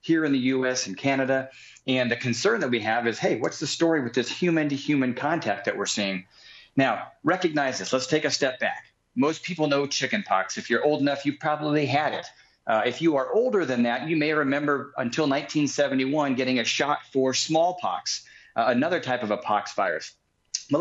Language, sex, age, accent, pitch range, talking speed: English, male, 40-59, American, 120-150 Hz, 205 wpm